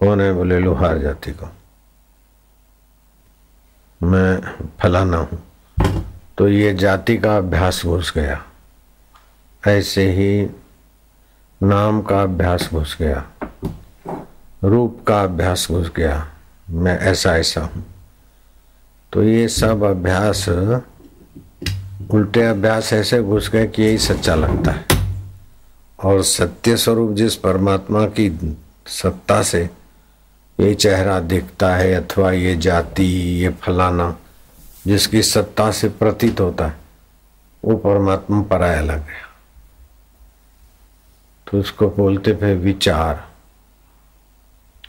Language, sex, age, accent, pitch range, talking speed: Hindi, male, 60-79, native, 85-100 Hz, 105 wpm